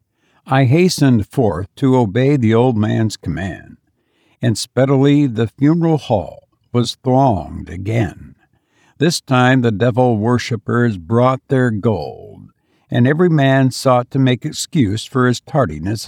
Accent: American